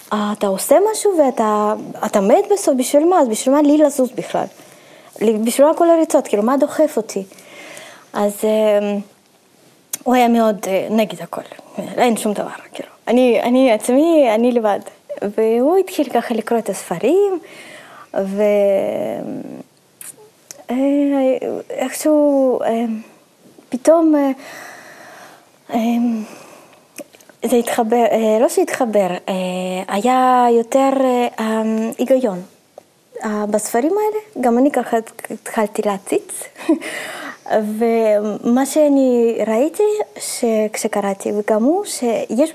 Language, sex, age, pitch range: Hebrew, female, 20-39, 215-300 Hz